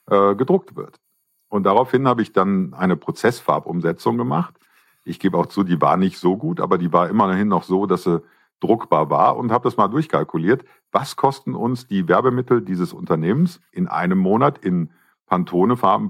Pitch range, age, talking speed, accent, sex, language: 90-130 Hz, 50-69, 170 wpm, German, male, German